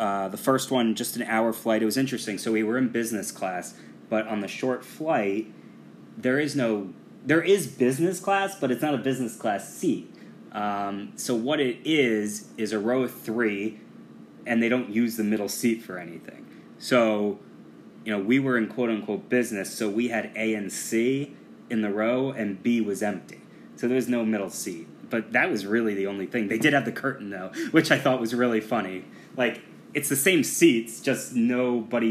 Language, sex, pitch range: English, male, 105-125 Hz